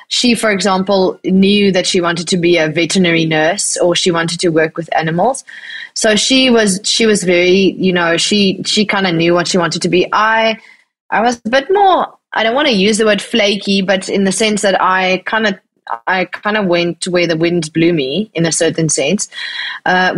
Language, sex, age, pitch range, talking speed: English, female, 20-39, 180-215 Hz, 220 wpm